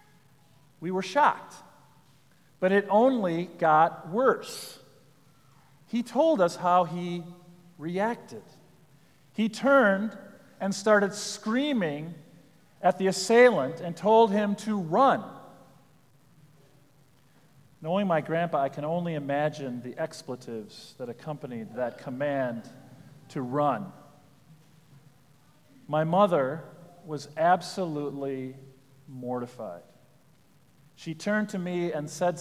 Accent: American